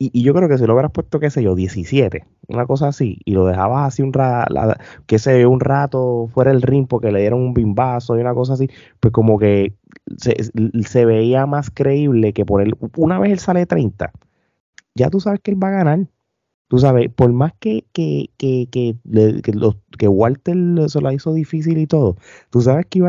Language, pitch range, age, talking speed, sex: Spanish, 100-135 Hz, 20-39, 230 wpm, male